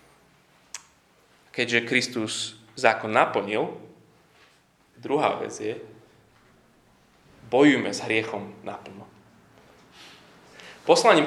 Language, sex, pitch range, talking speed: Slovak, male, 100-140 Hz, 65 wpm